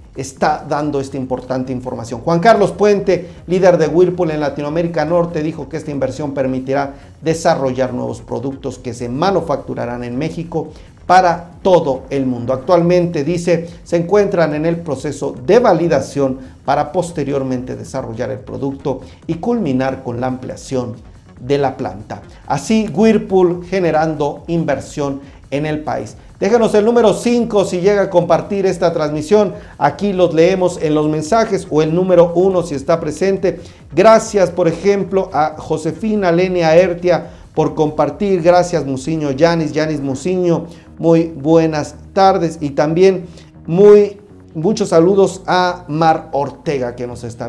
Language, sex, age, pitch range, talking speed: Spanish, male, 40-59, 135-180 Hz, 140 wpm